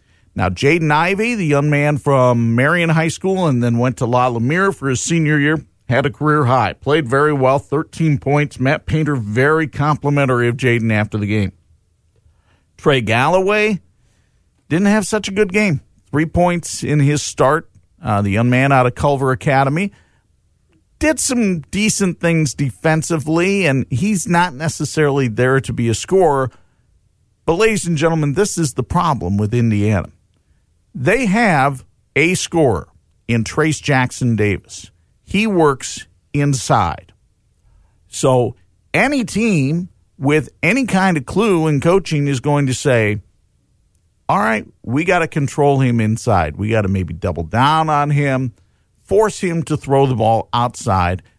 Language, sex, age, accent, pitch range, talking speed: English, male, 50-69, American, 105-160 Hz, 155 wpm